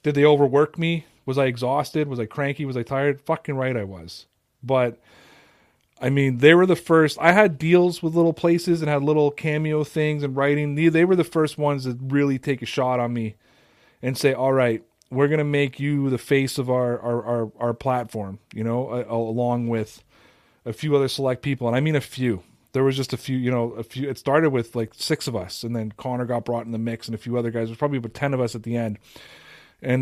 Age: 30-49